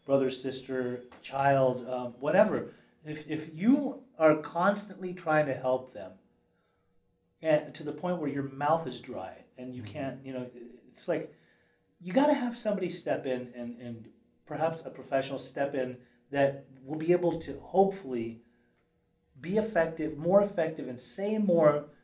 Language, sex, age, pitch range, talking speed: English, male, 30-49, 130-175 Hz, 155 wpm